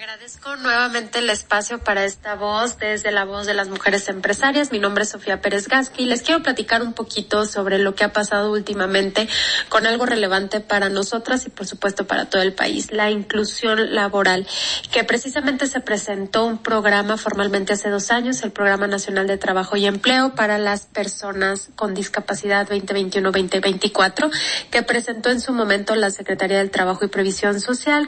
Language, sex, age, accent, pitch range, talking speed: Spanish, female, 30-49, Mexican, 200-230 Hz, 175 wpm